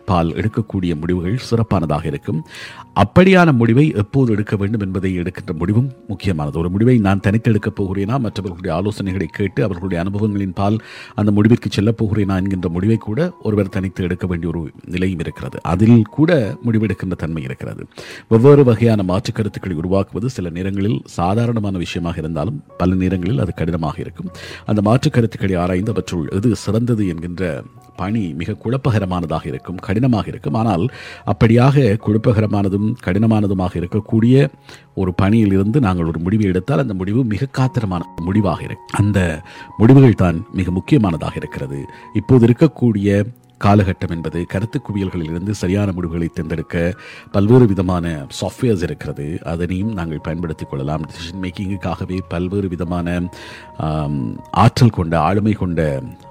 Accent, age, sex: native, 50-69, male